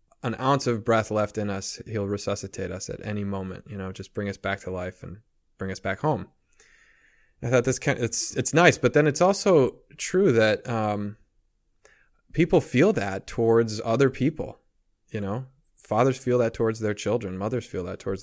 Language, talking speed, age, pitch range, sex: English, 195 wpm, 20-39, 95-125 Hz, male